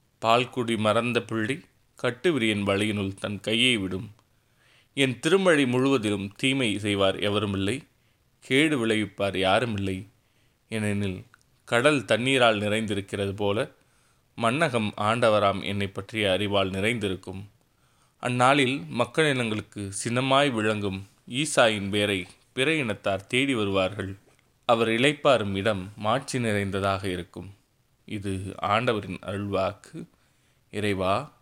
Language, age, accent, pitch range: Tamil, 20-39, native, 100-125 Hz